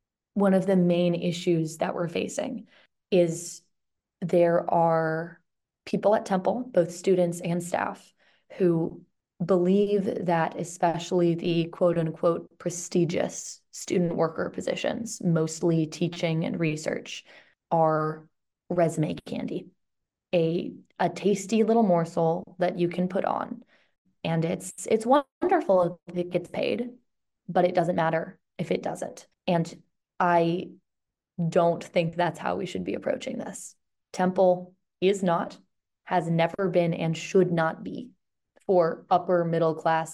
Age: 20-39